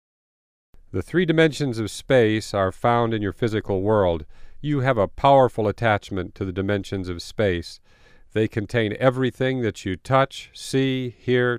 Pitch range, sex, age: 100-130 Hz, male, 50-69